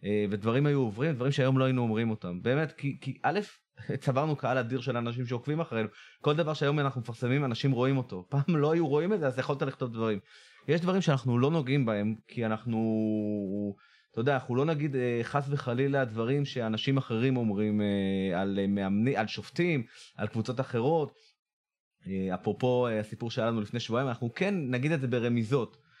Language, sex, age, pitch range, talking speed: Hebrew, male, 30-49, 110-140 Hz, 175 wpm